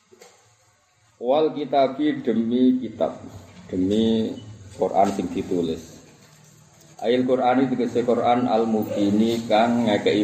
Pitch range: 100-130 Hz